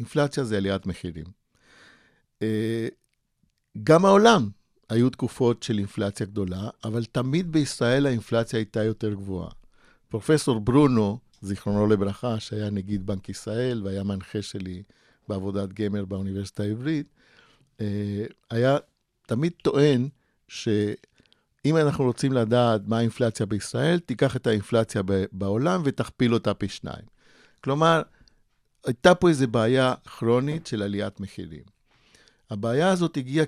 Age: 50-69